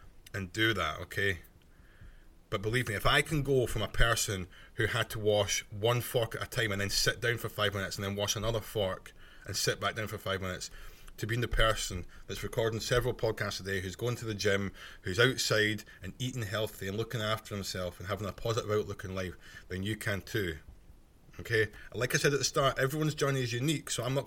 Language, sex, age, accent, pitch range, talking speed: English, male, 20-39, British, 95-120 Hz, 225 wpm